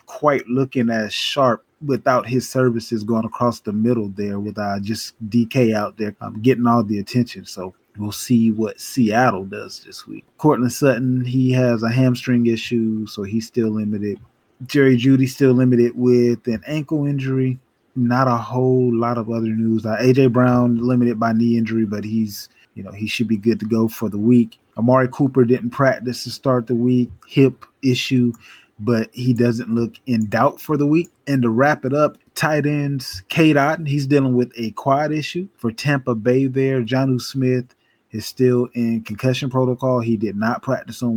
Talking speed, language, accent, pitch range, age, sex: 180 wpm, English, American, 115-130 Hz, 20-39, male